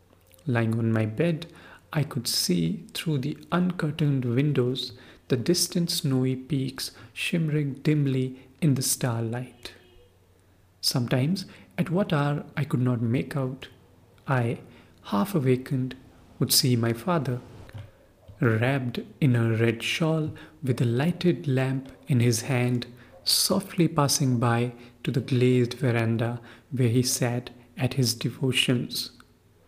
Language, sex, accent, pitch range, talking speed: English, male, Indian, 115-145 Hz, 120 wpm